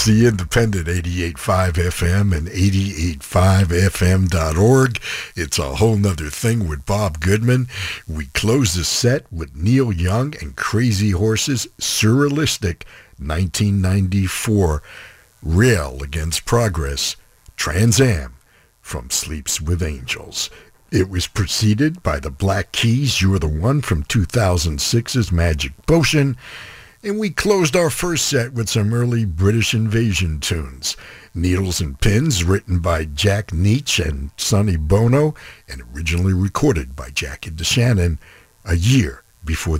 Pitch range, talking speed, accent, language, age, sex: 85-115 Hz, 120 wpm, American, English, 60-79, male